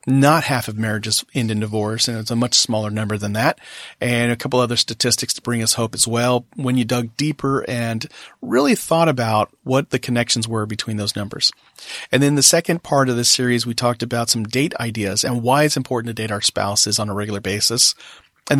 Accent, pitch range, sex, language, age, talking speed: American, 115-135 Hz, male, English, 40-59, 220 wpm